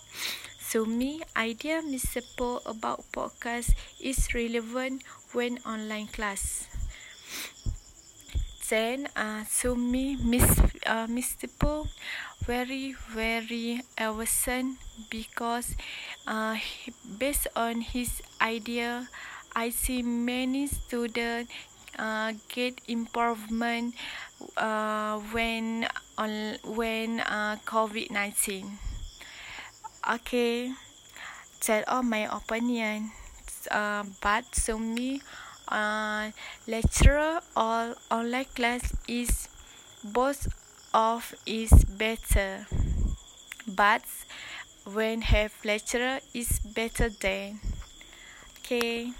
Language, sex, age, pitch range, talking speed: Malay, female, 20-39, 215-245 Hz, 85 wpm